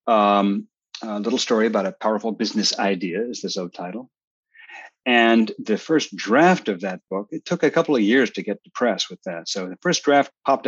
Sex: male